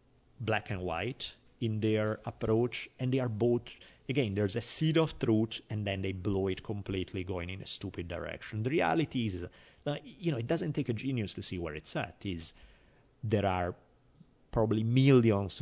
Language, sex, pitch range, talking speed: English, male, 90-110 Hz, 185 wpm